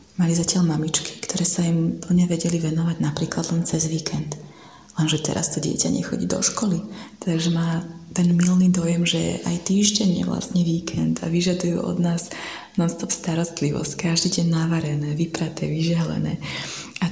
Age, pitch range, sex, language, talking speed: 20-39, 155-175 Hz, female, Slovak, 150 wpm